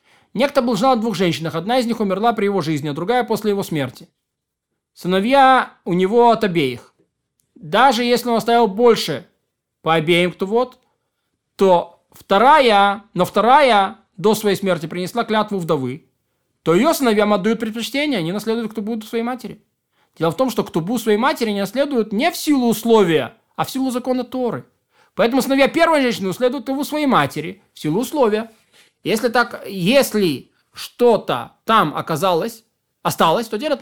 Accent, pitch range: native, 175-245 Hz